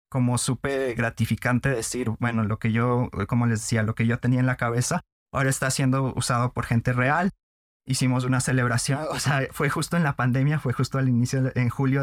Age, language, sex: 20-39, Spanish, male